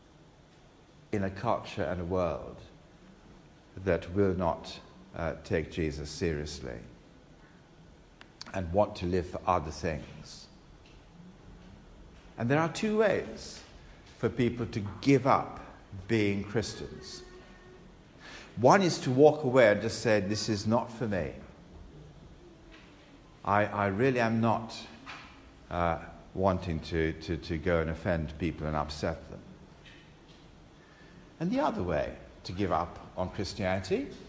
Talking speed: 125 wpm